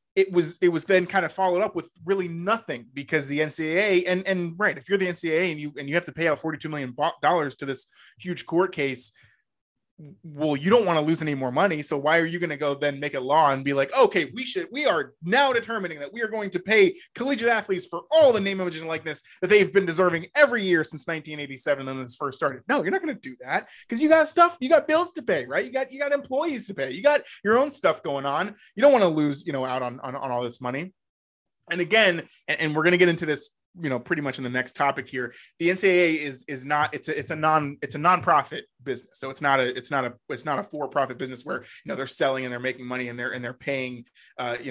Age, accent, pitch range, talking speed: 20-39, American, 135-190 Hz, 270 wpm